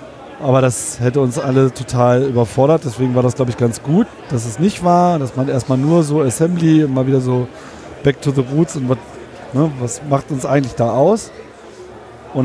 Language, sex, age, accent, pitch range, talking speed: German, male, 30-49, German, 130-150 Hz, 195 wpm